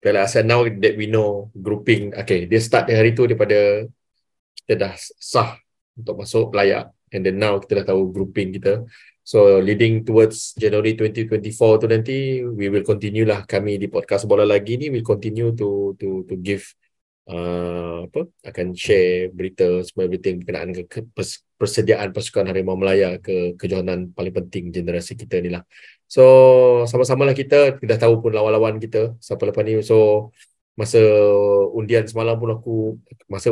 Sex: male